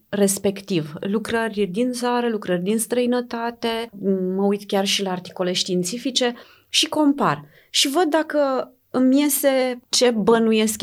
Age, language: 30-49, Romanian